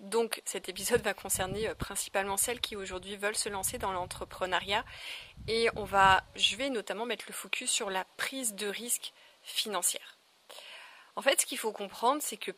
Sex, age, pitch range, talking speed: female, 30-49, 195-235 Hz, 175 wpm